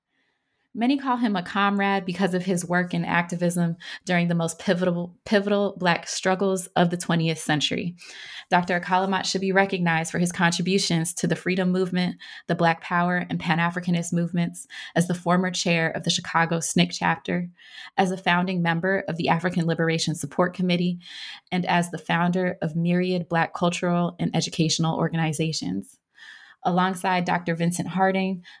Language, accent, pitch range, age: English, American, 165-185 Hz, 20-39